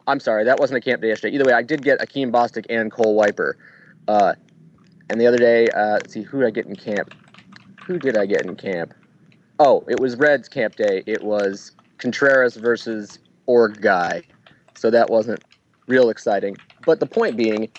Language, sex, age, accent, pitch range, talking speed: English, male, 20-39, American, 105-125 Hz, 200 wpm